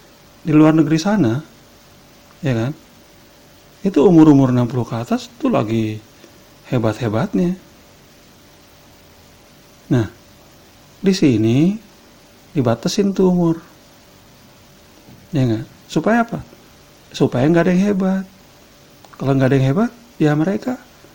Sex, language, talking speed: male, Indonesian, 100 wpm